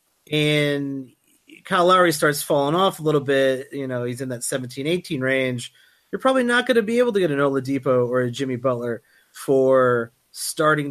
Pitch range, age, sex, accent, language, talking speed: 125-155 Hz, 30-49, male, American, English, 185 wpm